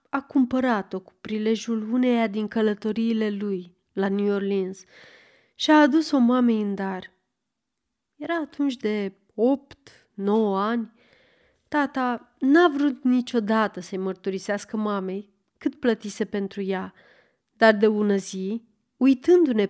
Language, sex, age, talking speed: Romanian, female, 30-49, 120 wpm